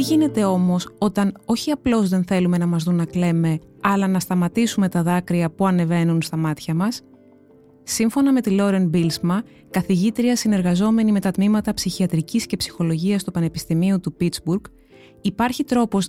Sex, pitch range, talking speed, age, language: female, 175-230 Hz, 160 wpm, 20-39, Greek